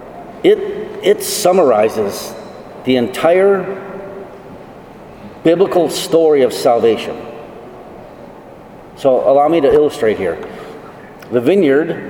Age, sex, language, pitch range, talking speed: 40-59, male, English, 130-165 Hz, 85 wpm